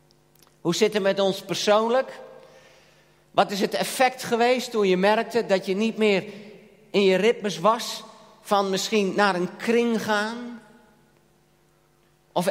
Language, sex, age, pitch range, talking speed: Dutch, male, 50-69, 190-240 Hz, 140 wpm